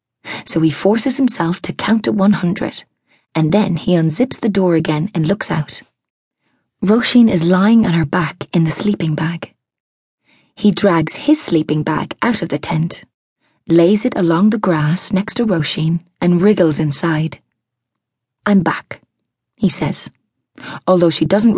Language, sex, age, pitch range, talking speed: English, female, 30-49, 160-215 Hz, 155 wpm